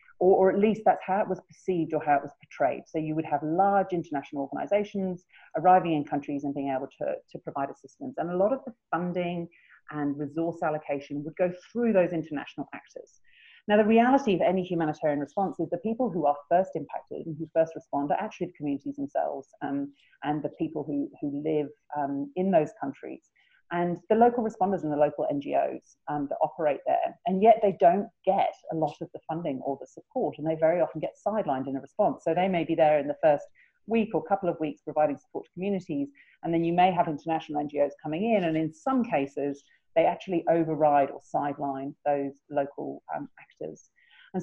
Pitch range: 145-185 Hz